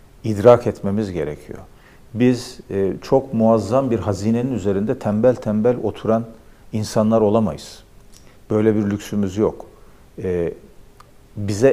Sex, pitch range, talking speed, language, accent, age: male, 100-125 Hz, 95 wpm, Turkish, native, 50-69